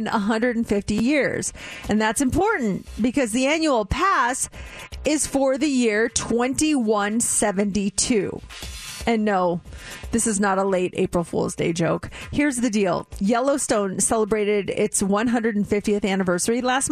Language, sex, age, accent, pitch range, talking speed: English, female, 30-49, American, 200-250 Hz, 120 wpm